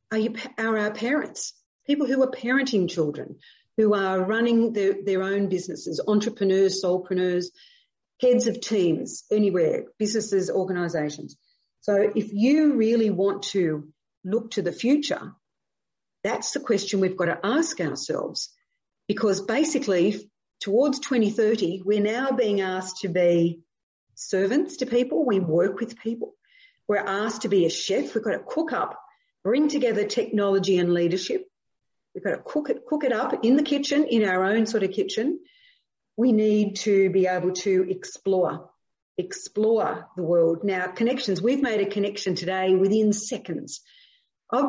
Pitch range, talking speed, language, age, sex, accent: 185-250 Hz, 150 wpm, English, 40-59, female, Australian